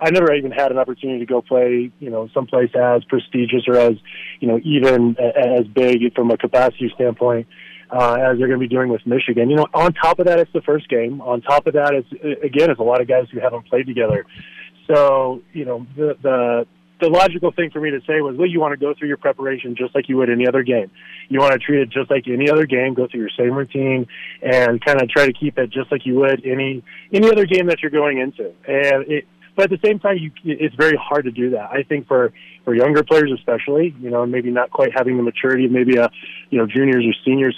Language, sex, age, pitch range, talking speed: English, male, 30-49, 120-145 Hz, 250 wpm